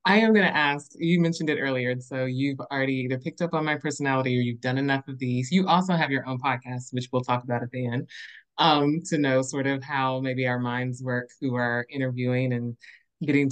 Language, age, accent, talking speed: English, 20-39, American, 235 wpm